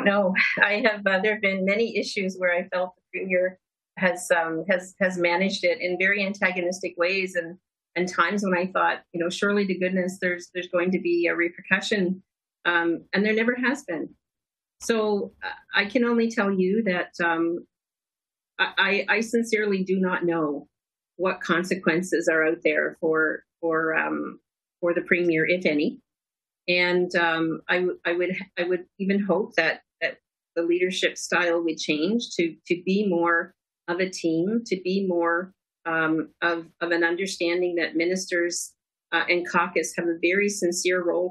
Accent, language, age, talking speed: American, English, 40-59, 170 wpm